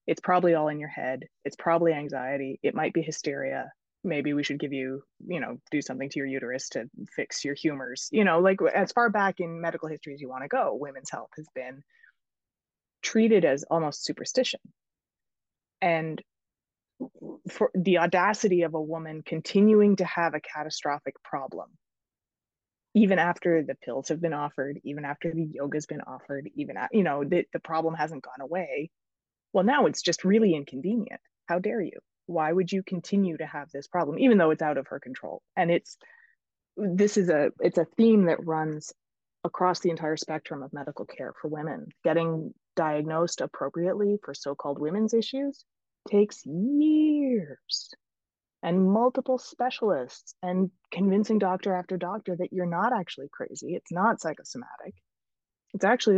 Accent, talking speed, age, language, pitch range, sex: American, 170 wpm, 20-39, English, 150-200 Hz, female